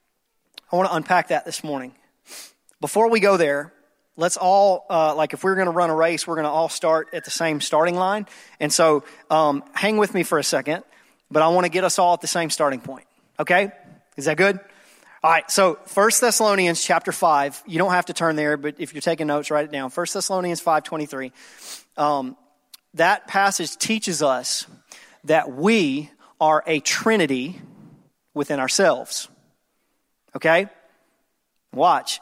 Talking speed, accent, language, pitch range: 175 wpm, American, English, 155-195 Hz